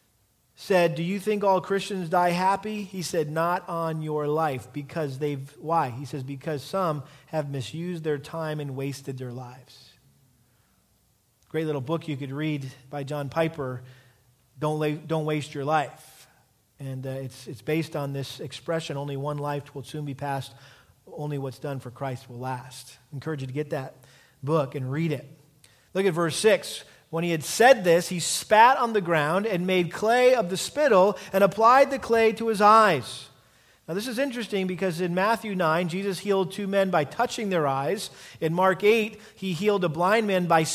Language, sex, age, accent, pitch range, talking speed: English, male, 40-59, American, 140-195 Hz, 190 wpm